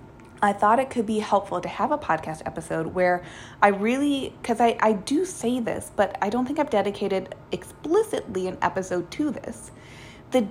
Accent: American